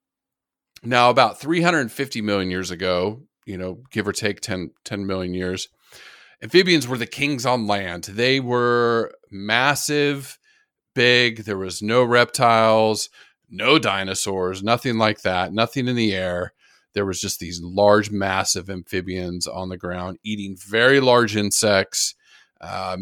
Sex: male